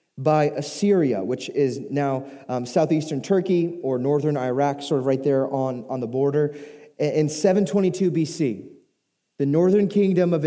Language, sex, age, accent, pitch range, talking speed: English, male, 20-39, American, 140-175 Hz, 150 wpm